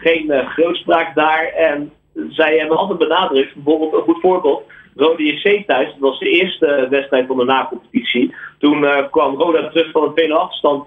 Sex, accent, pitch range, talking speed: male, Dutch, 140-180 Hz, 200 wpm